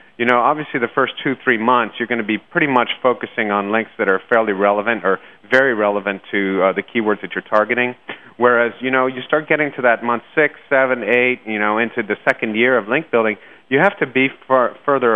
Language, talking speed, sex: English, 225 wpm, male